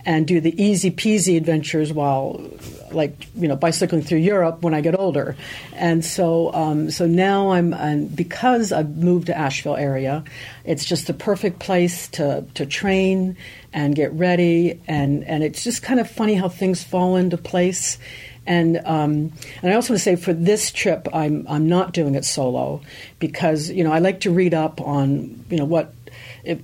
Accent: American